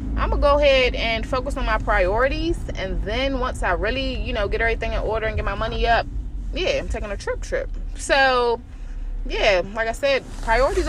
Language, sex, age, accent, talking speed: English, female, 20-39, American, 205 wpm